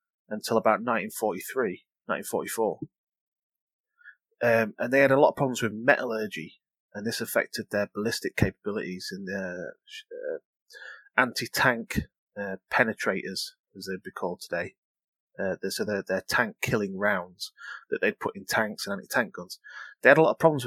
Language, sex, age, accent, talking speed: English, male, 30-49, British, 140 wpm